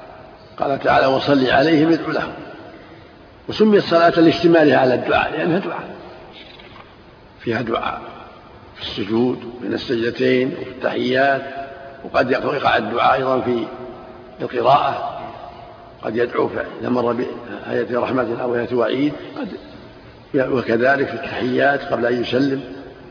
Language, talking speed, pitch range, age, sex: Arabic, 105 wpm, 125-165 Hz, 60-79, male